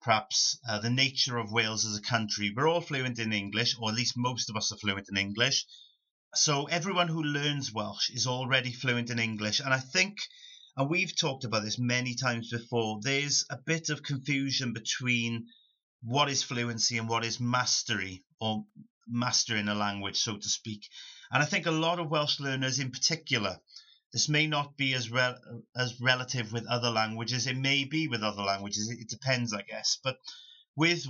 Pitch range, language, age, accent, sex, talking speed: 115-140 Hz, English, 30-49, British, male, 190 wpm